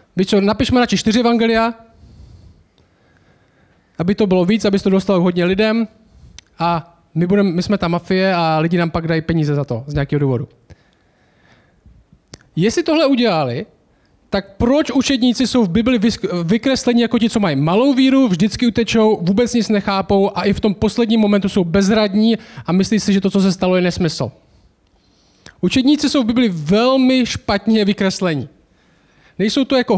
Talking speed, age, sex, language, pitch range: 160 wpm, 20-39, male, Czech, 175-225 Hz